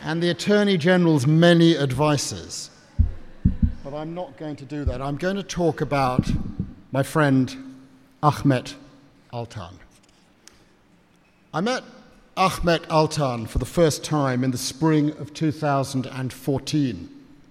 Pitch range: 135-160 Hz